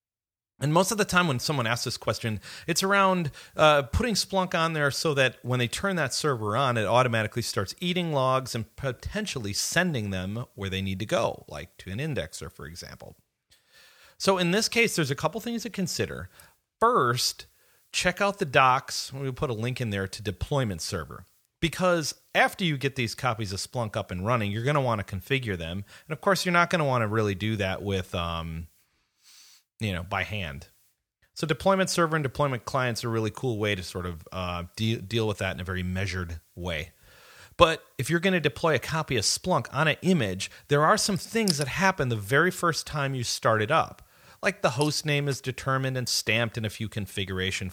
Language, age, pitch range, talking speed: English, 30-49, 100-160 Hz, 210 wpm